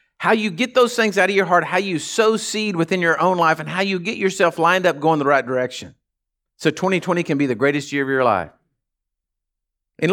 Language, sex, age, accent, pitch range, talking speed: English, male, 50-69, American, 120-190 Hz, 230 wpm